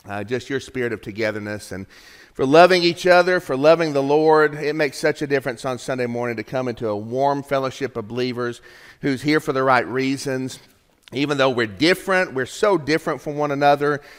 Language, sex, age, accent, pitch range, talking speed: English, male, 40-59, American, 120-150 Hz, 200 wpm